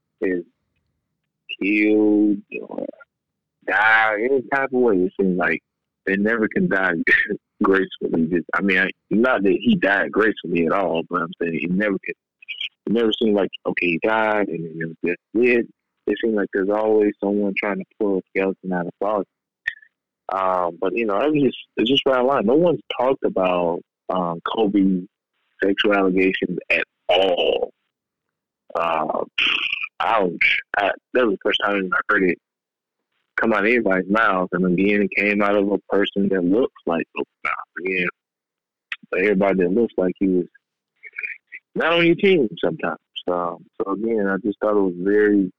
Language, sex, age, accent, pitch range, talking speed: English, male, 30-49, American, 90-115 Hz, 175 wpm